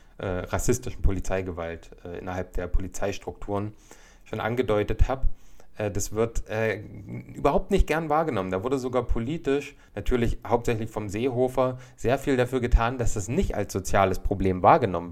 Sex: male